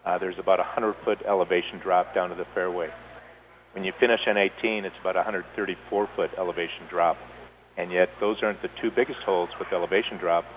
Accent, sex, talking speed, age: American, male, 205 wpm, 50-69